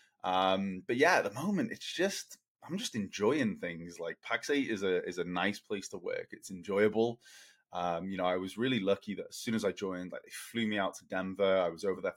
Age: 20-39